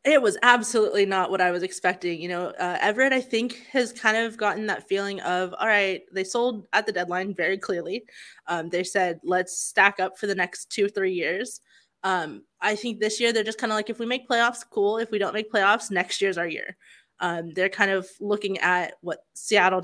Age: 20-39